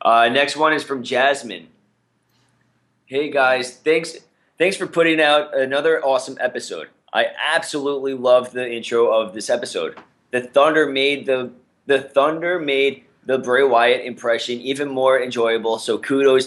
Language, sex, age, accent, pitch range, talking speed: English, male, 20-39, American, 115-140 Hz, 145 wpm